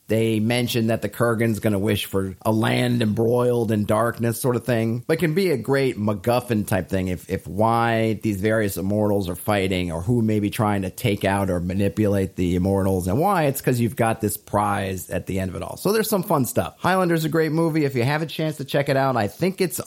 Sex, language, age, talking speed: male, English, 30-49, 240 wpm